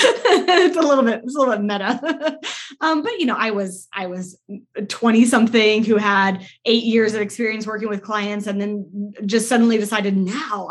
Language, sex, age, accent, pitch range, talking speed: English, female, 20-39, American, 200-255 Hz, 190 wpm